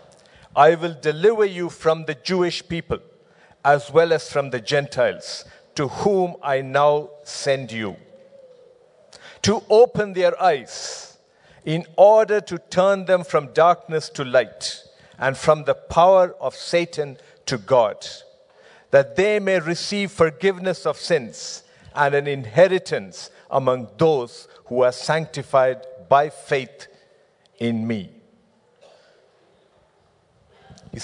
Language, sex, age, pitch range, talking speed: English, male, 50-69, 140-190 Hz, 120 wpm